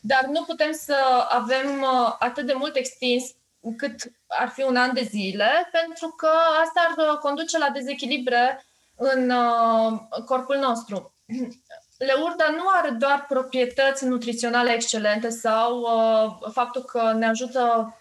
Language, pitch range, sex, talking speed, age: Romanian, 225-280 Hz, female, 125 wpm, 20-39